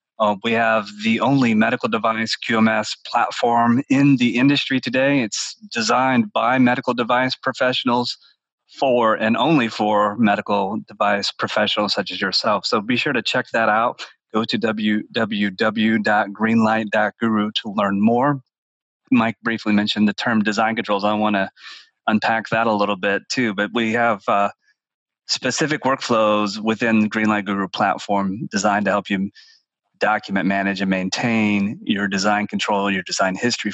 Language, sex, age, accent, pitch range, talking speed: English, male, 30-49, American, 105-120 Hz, 145 wpm